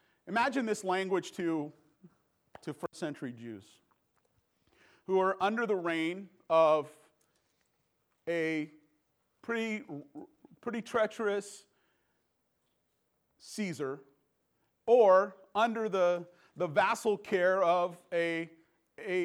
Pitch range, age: 165-220 Hz, 40-59